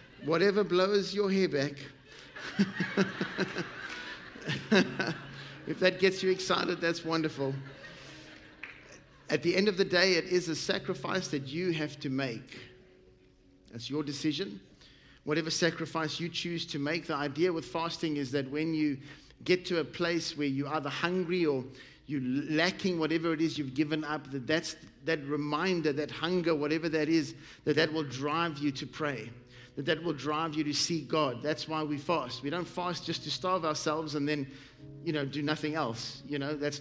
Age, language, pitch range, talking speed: 50-69, English, 140-165 Hz, 170 wpm